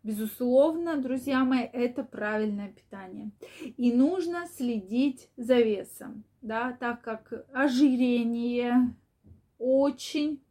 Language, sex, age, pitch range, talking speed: Russian, female, 20-39, 220-265 Hz, 90 wpm